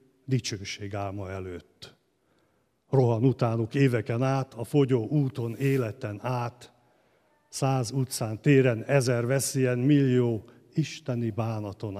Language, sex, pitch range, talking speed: Hungarian, male, 110-140 Hz, 95 wpm